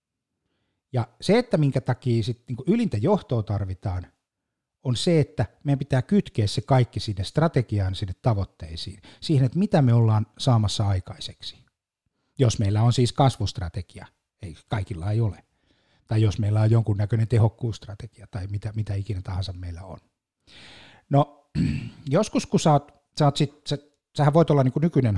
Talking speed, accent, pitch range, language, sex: 155 wpm, native, 105-150 Hz, Finnish, male